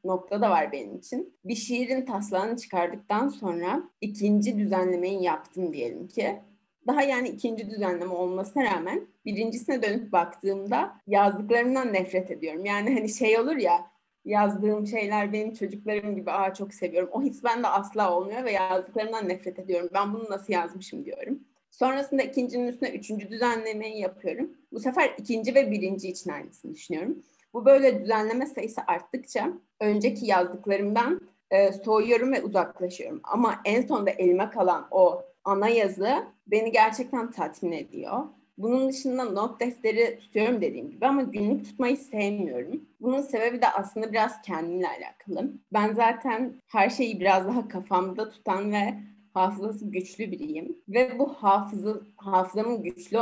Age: 30-49